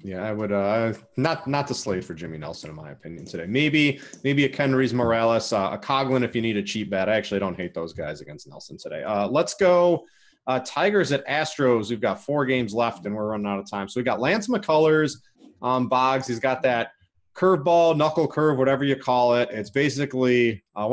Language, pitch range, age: English, 110-140 Hz, 30-49